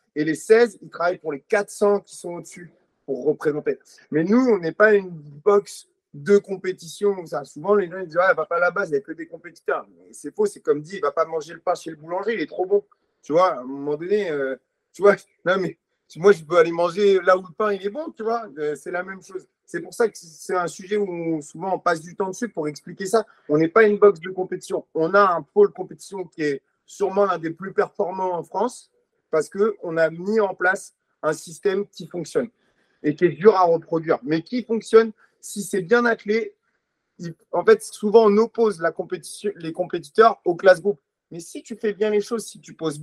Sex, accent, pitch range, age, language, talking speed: male, French, 165-210 Hz, 30-49, French, 240 wpm